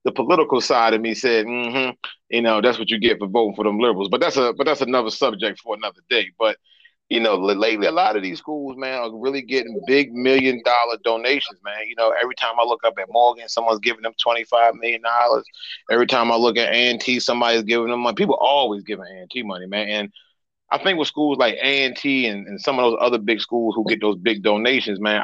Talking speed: 240 wpm